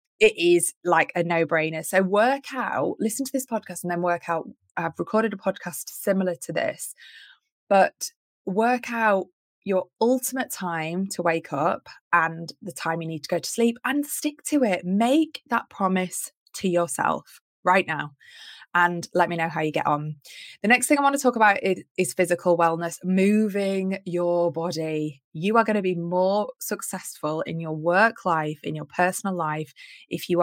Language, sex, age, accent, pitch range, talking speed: English, female, 20-39, British, 165-200 Hz, 185 wpm